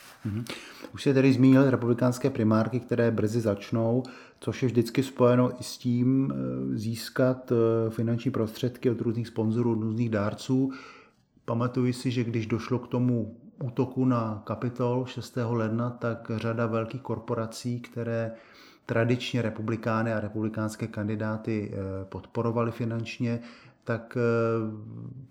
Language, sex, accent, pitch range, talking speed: Czech, male, native, 115-125 Hz, 125 wpm